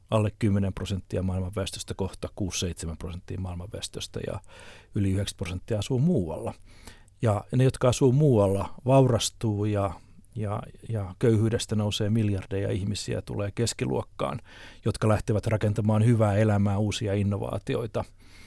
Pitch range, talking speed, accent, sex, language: 100-115 Hz, 115 wpm, native, male, Finnish